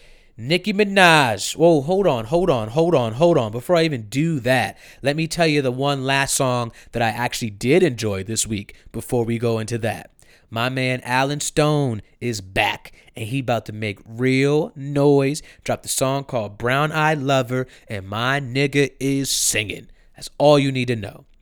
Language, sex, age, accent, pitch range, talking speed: English, male, 30-49, American, 115-150 Hz, 190 wpm